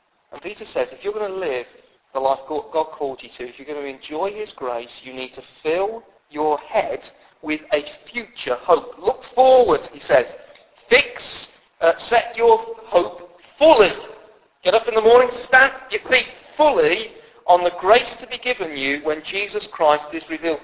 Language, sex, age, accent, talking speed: English, male, 40-59, British, 180 wpm